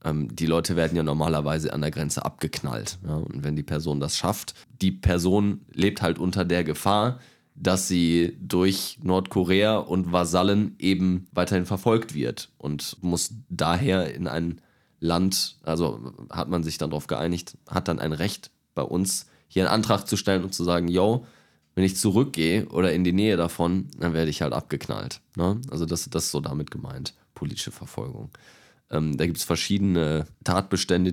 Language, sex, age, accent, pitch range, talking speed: German, male, 20-39, German, 80-95 Hz, 170 wpm